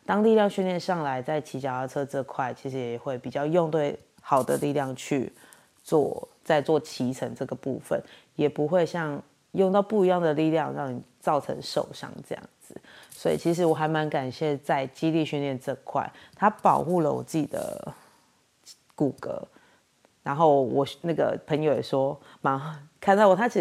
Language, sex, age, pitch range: Chinese, female, 30-49, 135-170 Hz